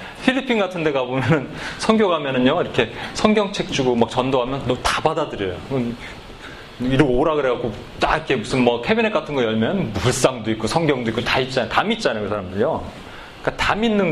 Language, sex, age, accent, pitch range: Korean, male, 30-49, native, 120-195 Hz